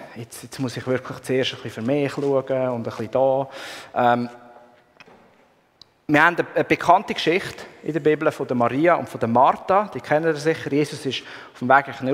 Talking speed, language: 200 wpm, German